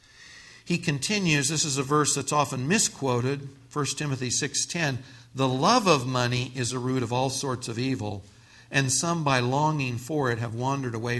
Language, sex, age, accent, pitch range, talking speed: English, male, 60-79, American, 120-160 Hz, 175 wpm